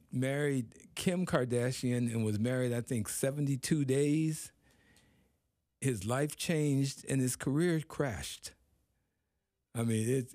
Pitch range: 105-140 Hz